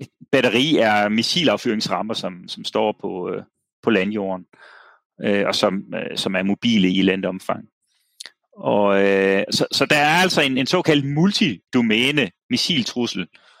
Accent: native